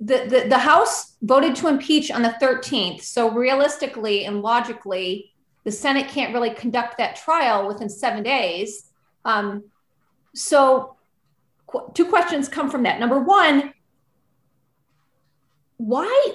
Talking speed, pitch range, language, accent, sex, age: 130 wpm, 220-290 Hz, English, American, female, 30-49